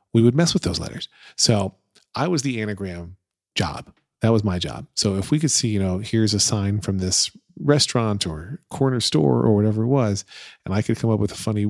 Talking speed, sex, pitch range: 225 wpm, male, 100-120 Hz